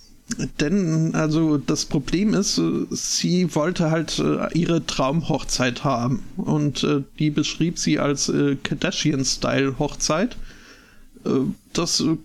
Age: 50-69